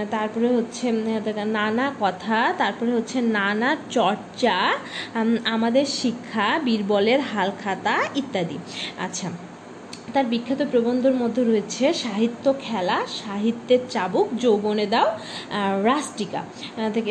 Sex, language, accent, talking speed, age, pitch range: female, Bengali, native, 95 wpm, 30-49, 210-260 Hz